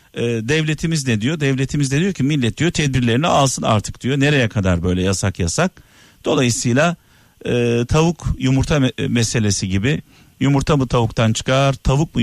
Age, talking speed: 50-69, 140 wpm